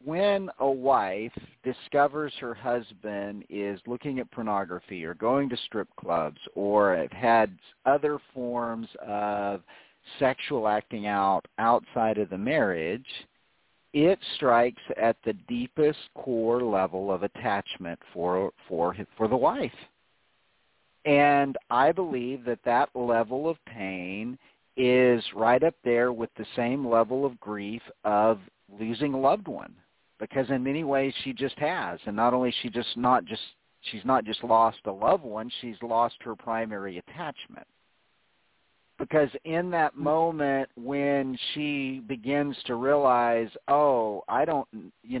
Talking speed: 140 wpm